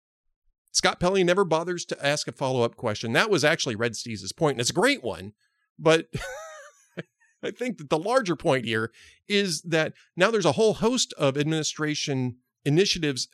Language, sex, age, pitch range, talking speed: English, male, 40-59, 115-160 Hz, 170 wpm